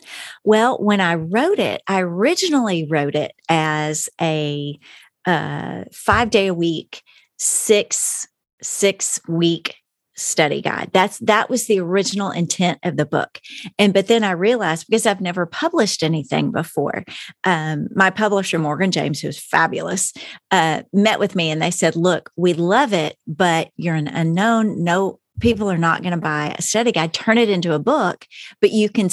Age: 40-59